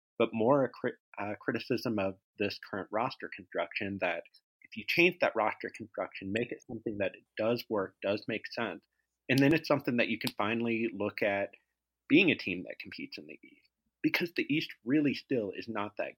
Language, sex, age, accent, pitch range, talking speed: English, male, 30-49, American, 105-145 Hz, 200 wpm